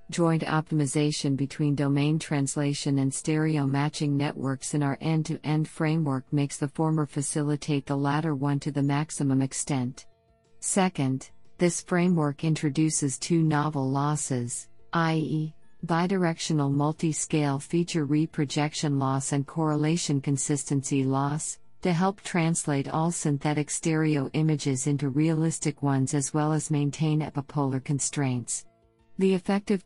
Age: 50-69